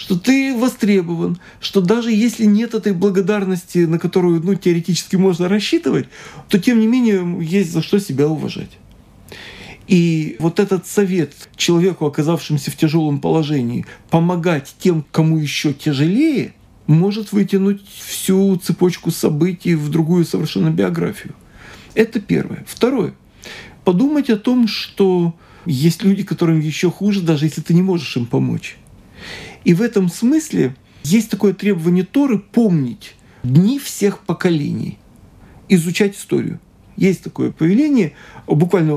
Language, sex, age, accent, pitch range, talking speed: Russian, male, 40-59, native, 160-210 Hz, 130 wpm